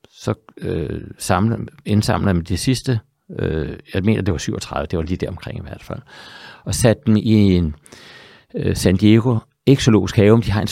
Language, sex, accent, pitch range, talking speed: Danish, male, native, 90-110 Hz, 190 wpm